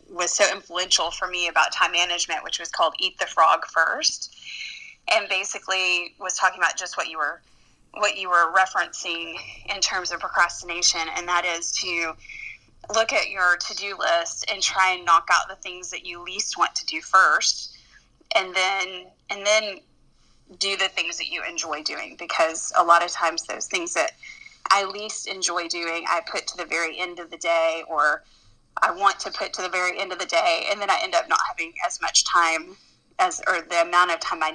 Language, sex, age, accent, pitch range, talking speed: English, female, 20-39, American, 175-210 Hz, 200 wpm